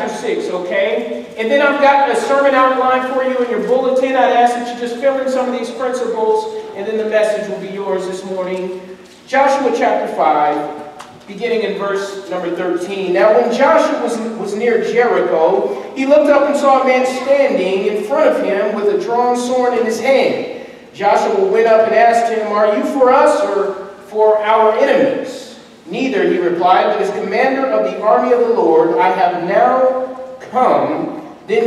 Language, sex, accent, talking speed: English, male, American, 190 wpm